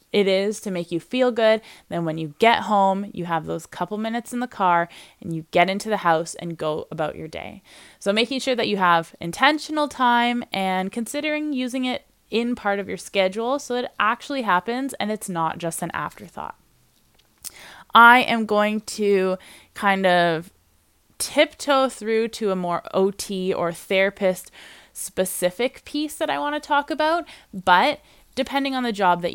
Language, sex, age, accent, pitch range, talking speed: English, female, 20-39, American, 180-250 Hz, 180 wpm